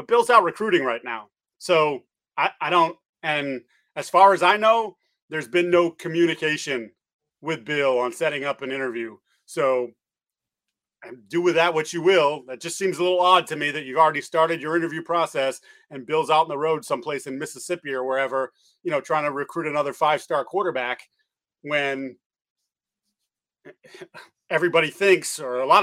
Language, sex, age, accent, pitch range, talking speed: English, male, 30-49, American, 140-175 Hz, 175 wpm